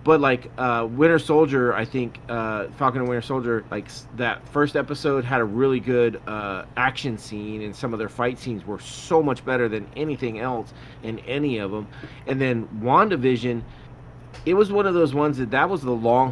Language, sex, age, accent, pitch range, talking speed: English, male, 30-49, American, 110-130 Hz, 200 wpm